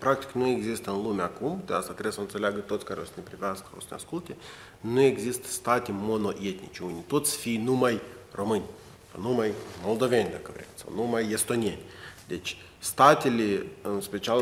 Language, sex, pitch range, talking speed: Romanian, male, 100-125 Hz, 170 wpm